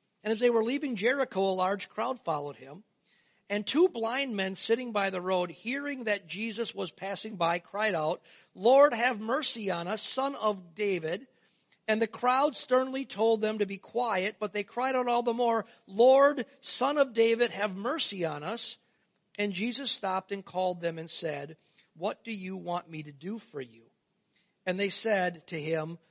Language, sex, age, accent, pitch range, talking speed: English, male, 50-69, American, 165-225 Hz, 185 wpm